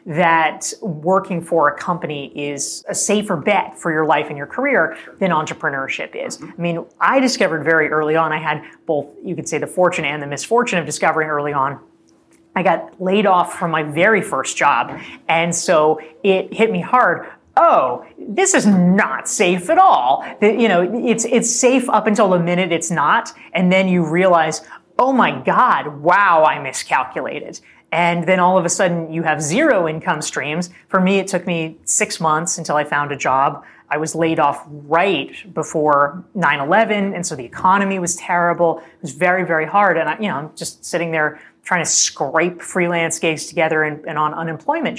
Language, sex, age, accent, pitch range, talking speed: English, female, 30-49, American, 155-195 Hz, 190 wpm